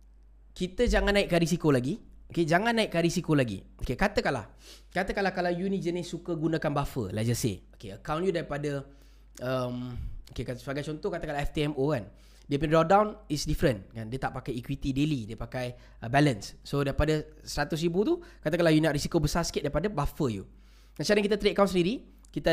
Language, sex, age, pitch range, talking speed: Malay, male, 20-39, 130-195 Hz, 180 wpm